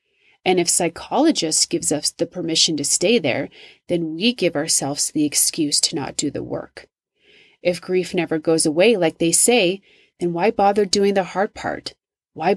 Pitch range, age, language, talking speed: 165-215 Hz, 30-49, English, 175 wpm